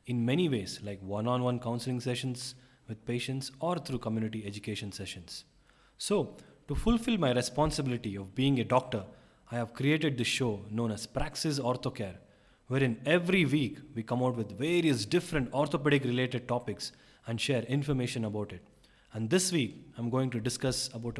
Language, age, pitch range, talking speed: English, 30-49, 120-160 Hz, 160 wpm